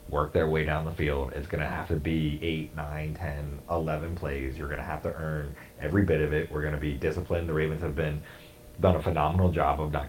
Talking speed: 245 wpm